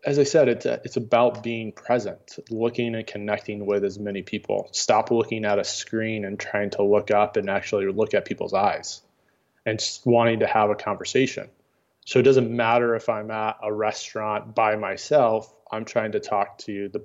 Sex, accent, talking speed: male, American, 195 wpm